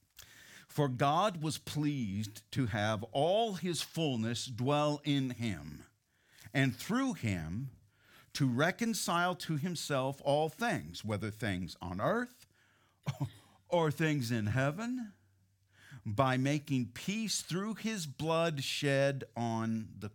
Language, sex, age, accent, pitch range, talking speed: English, male, 50-69, American, 110-165 Hz, 115 wpm